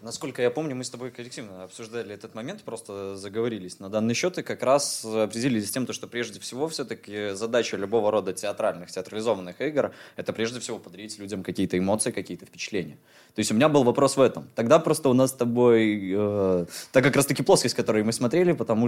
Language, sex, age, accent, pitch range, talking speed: Russian, male, 20-39, native, 105-135 Hz, 205 wpm